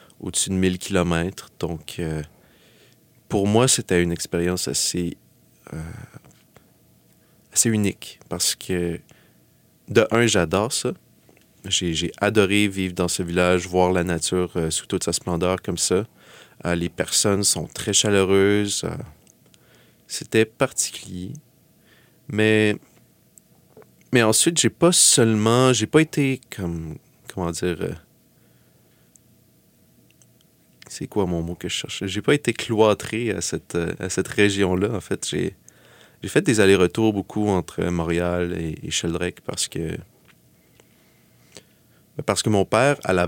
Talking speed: 130 wpm